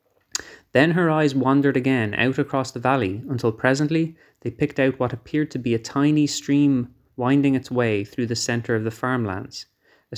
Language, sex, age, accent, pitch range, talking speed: English, male, 30-49, Irish, 110-135 Hz, 185 wpm